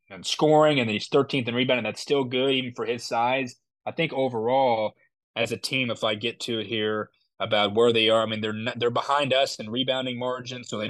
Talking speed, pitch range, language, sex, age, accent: 235 wpm, 105-130 Hz, English, male, 20-39, American